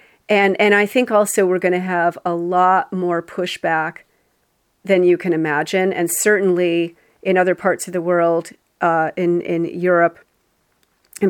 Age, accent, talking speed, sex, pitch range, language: 40-59, American, 160 wpm, female, 170-195 Hz, English